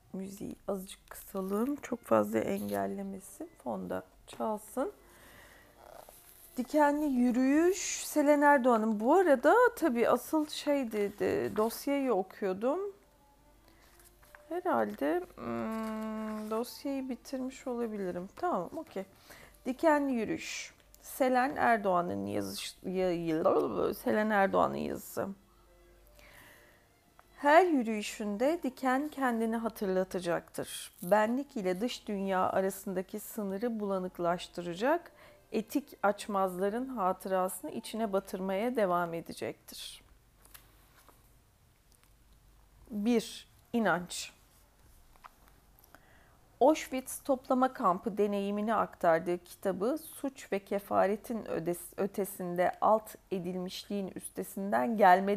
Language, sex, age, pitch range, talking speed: Turkish, female, 40-59, 190-260 Hz, 75 wpm